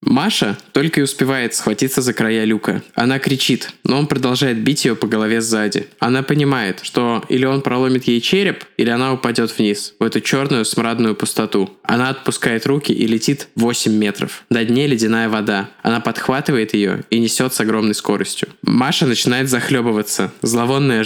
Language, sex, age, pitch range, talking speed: Russian, male, 20-39, 115-135 Hz, 165 wpm